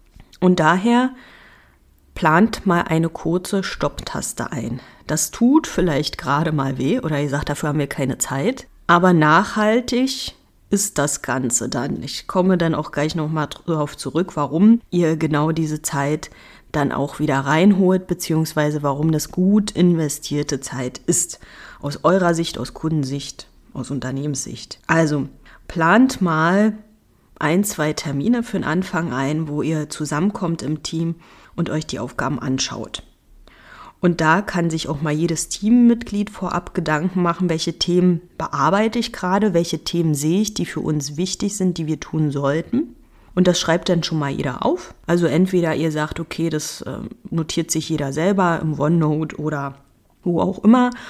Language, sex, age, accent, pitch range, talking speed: German, female, 30-49, German, 150-185 Hz, 155 wpm